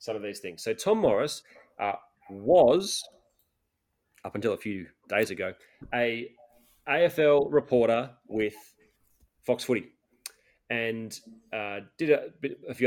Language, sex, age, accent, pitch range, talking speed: English, male, 30-49, Australian, 110-125 Hz, 125 wpm